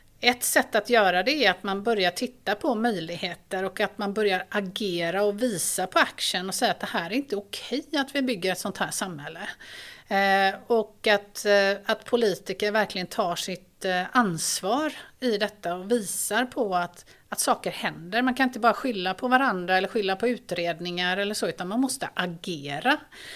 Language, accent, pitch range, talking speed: Swedish, native, 195-240 Hz, 190 wpm